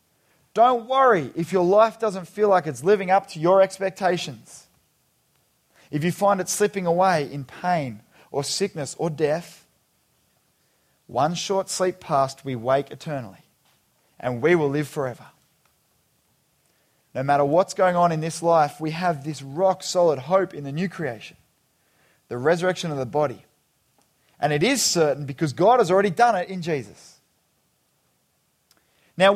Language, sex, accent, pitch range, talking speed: English, male, Australian, 155-210 Hz, 150 wpm